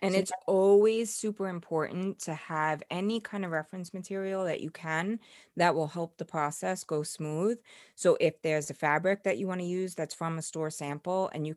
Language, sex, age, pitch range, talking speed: English, female, 20-39, 160-205 Hz, 200 wpm